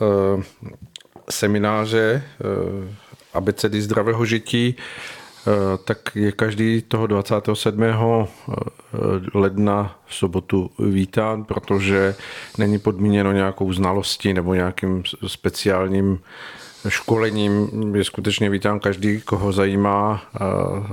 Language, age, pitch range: Czech, 40-59, 95-110 Hz